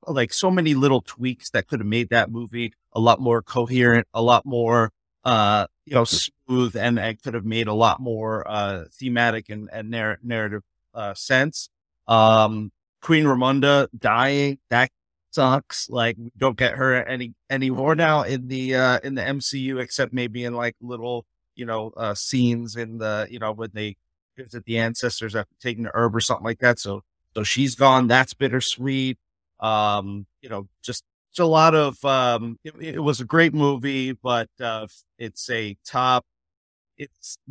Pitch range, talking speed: 105-130 Hz, 175 wpm